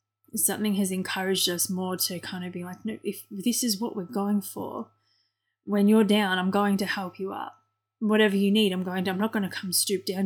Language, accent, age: English, Australian, 20-39